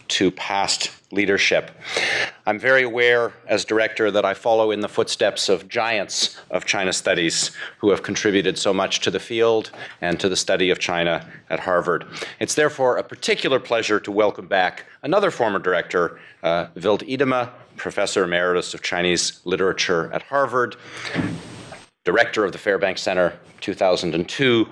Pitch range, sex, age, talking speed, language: 95-125 Hz, male, 40-59, 150 wpm, English